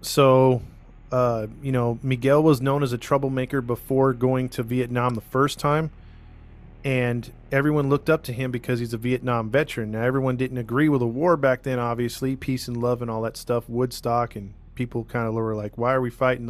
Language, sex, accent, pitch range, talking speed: English, male, American, 120-135 Hz, 205 wpm